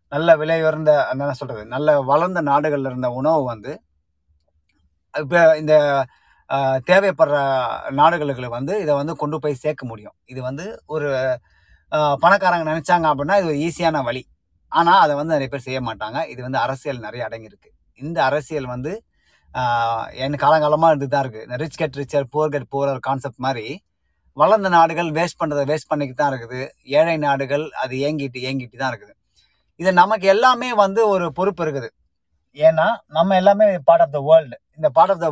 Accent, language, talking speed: native, Tamil, 155 wpm